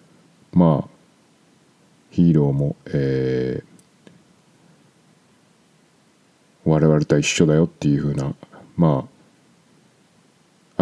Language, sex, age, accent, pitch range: Japanese, male, 50-69, native, 75-105 Hz